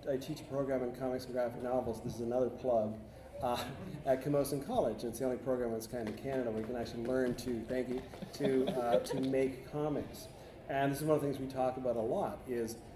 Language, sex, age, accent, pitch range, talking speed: English, male, 40-59, American, 115-135 Hz, 235 wpm